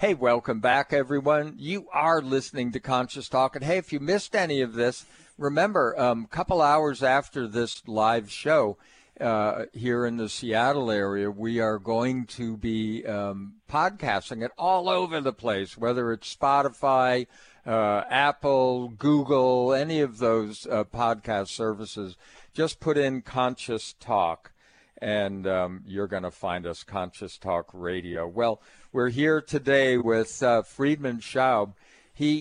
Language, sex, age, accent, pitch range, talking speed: English, male, 60-79, American, 110-140 Hz, 150 wpm